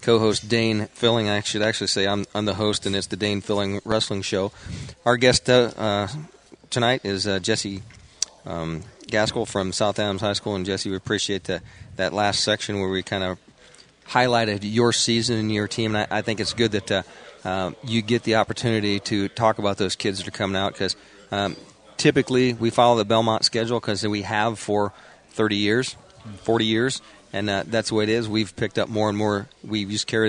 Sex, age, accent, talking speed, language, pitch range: male, 40-59, American, 205 wpm, English, 100-115 Hz